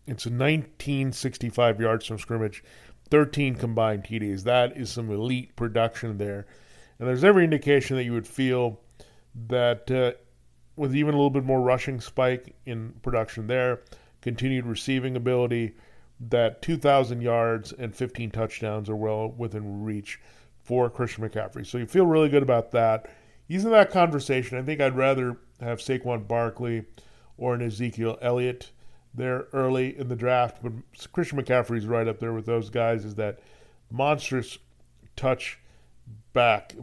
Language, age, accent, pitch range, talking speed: English, 40-59, American, 115-130 Hz, 150 wpm